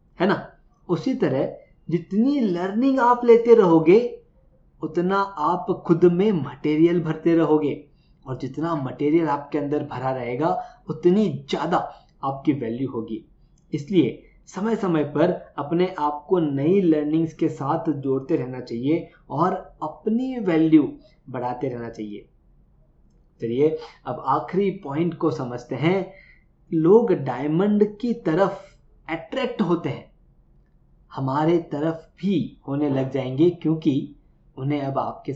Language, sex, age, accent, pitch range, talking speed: Hindi, male, 20-39, native, 135-175 Hz, 125 wpm